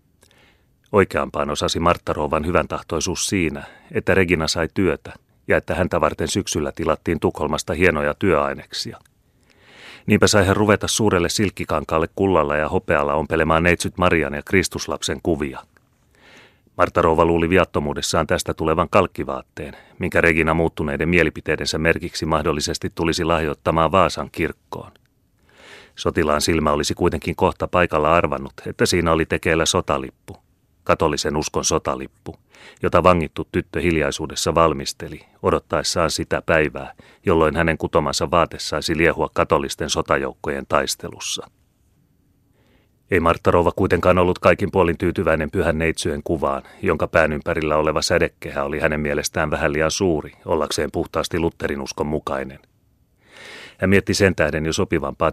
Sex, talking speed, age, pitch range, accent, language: male, 125 wpm, 30-49, 75-90 Hz, native, Finnish